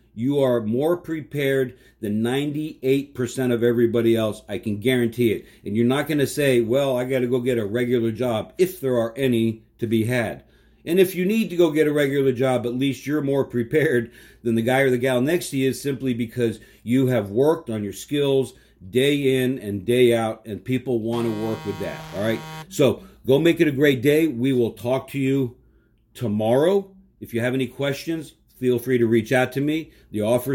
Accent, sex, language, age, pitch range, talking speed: American, male, English, 50-69, 120-140 Hz, 215 wpm